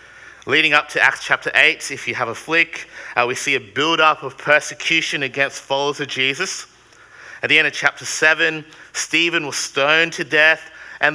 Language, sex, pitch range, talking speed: English, male, 135-175 Hz, 185 wpm